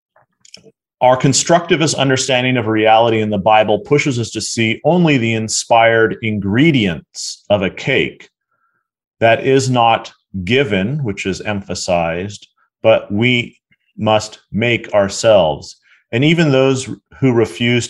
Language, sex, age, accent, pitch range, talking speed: English, male, 30-49, American, 105-125 Hz, 120 wpm